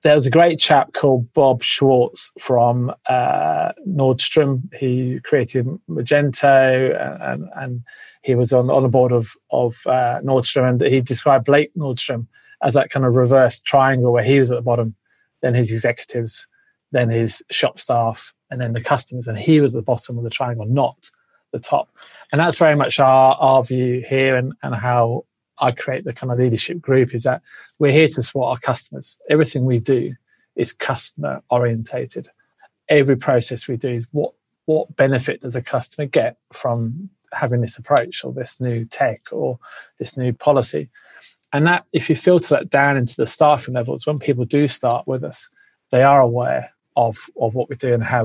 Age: 20-39